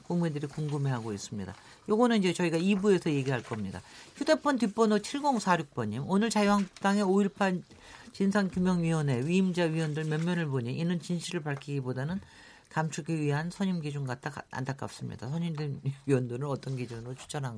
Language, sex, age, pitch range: Korean, male, 50-69, 140-200 Hz